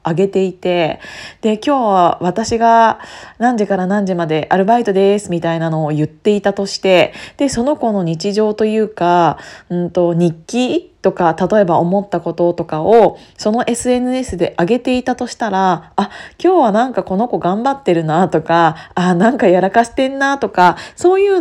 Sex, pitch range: female, 180-235 Hz